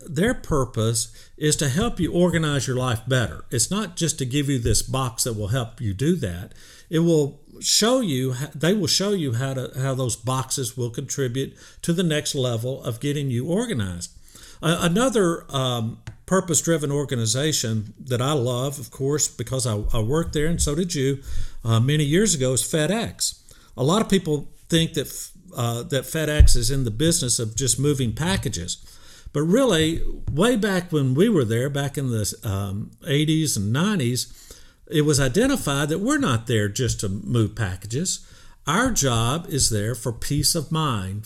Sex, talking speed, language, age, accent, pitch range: male, 175 wpm, English, 50-69, American, 120-160 Hz